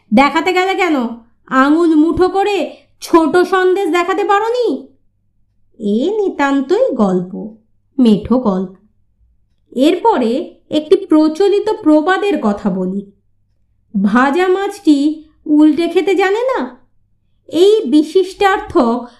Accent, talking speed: native, 90 wpm